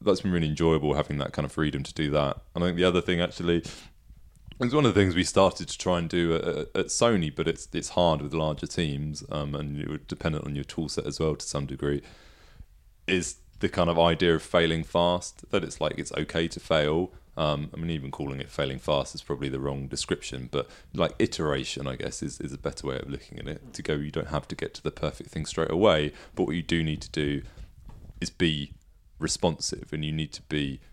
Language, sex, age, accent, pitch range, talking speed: English, male, 30-49, British, 75-90 Hz, 240 wpm